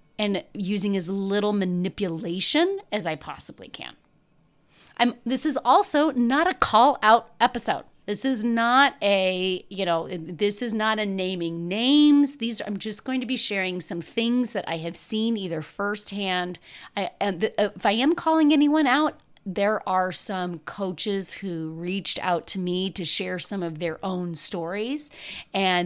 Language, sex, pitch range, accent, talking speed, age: English, female, 175-235 Hz, American, 165 wpm, 30-49